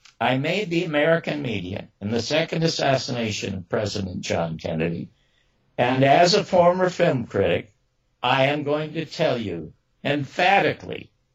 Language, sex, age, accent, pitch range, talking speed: English, male, 60-79, American, 125-165 Hz, 135 wpm